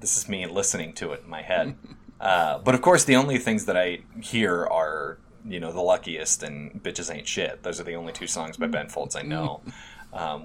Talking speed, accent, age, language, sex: 230 wpm, American, 30-49, English, male